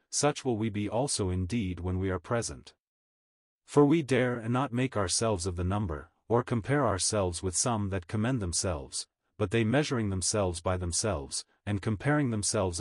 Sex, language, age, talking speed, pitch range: male, English, 40-59, 175 wpm, 90-120 Hz